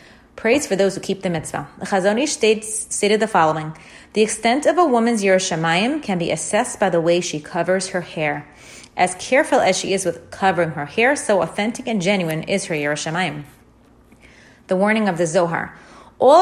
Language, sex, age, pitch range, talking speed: English, female, 30-49, 170-230 Hz, 185 wpm